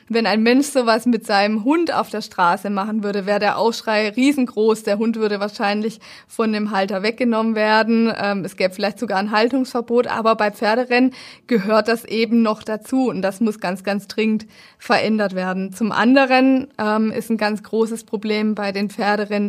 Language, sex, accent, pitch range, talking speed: German, female, German, 205-230 Hz, 180 wpm